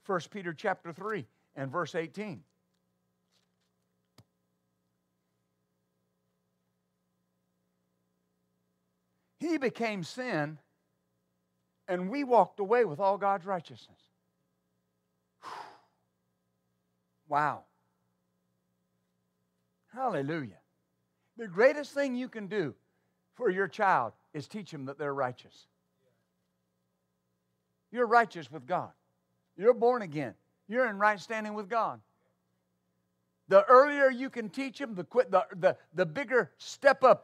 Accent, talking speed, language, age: American, 95 wpm, English, 60-79